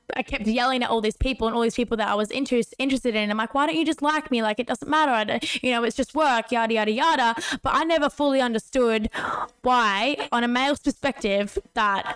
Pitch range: 210-260 Hz